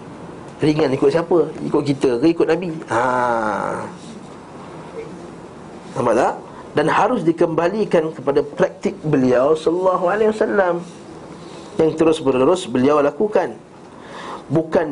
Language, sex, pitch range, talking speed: Malay, male, 135-175 Hz, 105 wpm